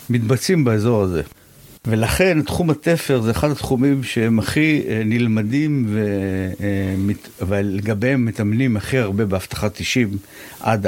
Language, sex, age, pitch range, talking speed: Hebrew, male, 60-79, 105-130 Hz, 120 wpm